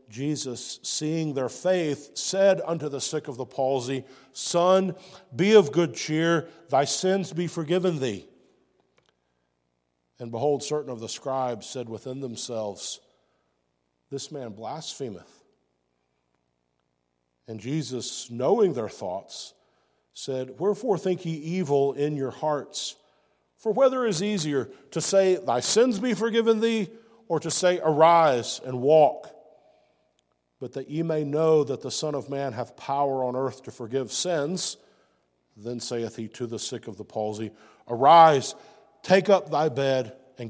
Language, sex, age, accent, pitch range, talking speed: English, male, 50-69, American, 115-160 Hz, 140 wpm